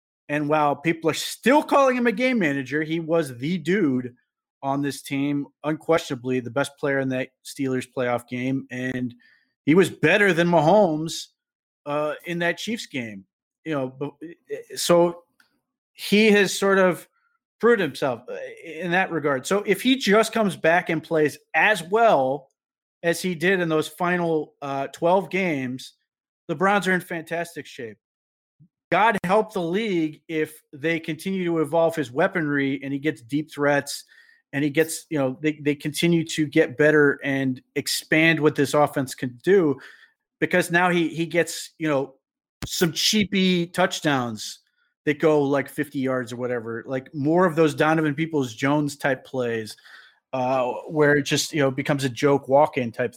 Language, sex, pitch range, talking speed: English, male, 140-180 Hz, 165 wpm